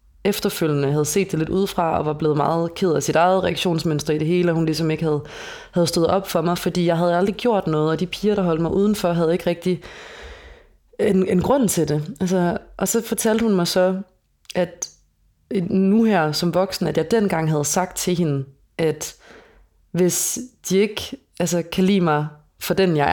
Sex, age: female, 30-49